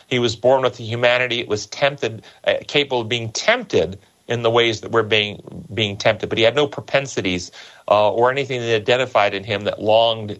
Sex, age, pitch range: male, 40-59, 110-135 Hz